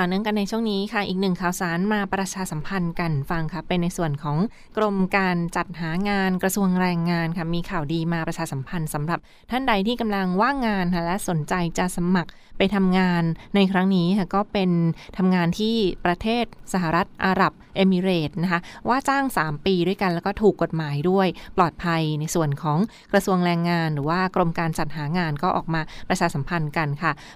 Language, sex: Thai, female